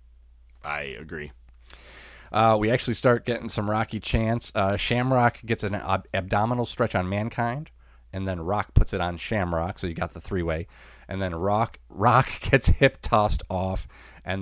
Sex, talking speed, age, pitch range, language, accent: male, 170 wpm, 30-49, 80-105 Hz, English, American